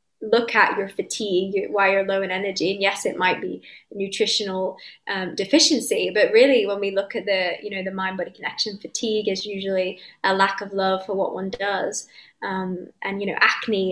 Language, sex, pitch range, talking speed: English, female, 190-220 Hz, 195 wpm